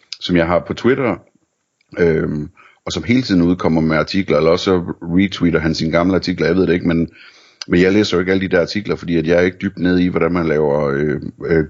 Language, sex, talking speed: Danish, male, 235 wpm